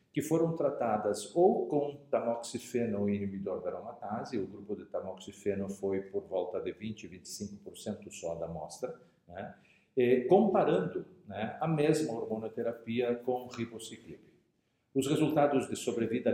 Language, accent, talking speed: Portuguese, Brazilian, 130 wpm